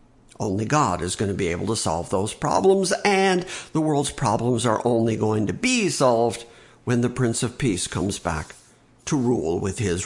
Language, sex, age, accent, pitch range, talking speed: English, male, 50-69, American, 105-145 Hz, 190 wpm